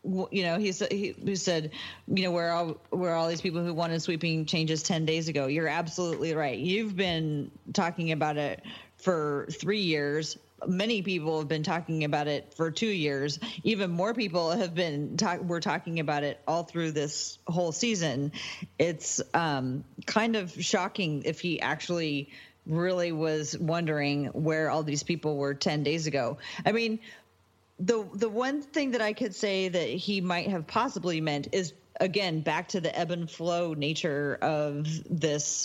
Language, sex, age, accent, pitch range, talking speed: English, female, 30-49, American, 155-195 Hz, 170 wpm